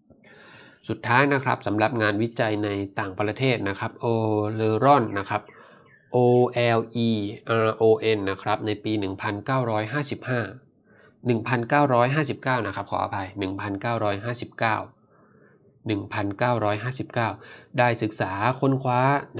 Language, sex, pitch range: Thai, male, 105-125 Hz